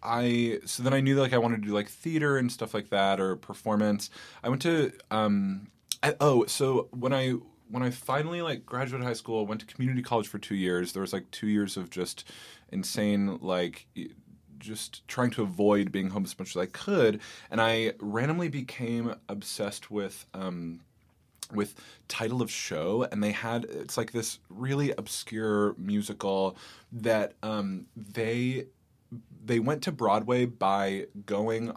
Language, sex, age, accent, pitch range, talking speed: English, male, 20-39, American, 100-125 Hz, 170 wpm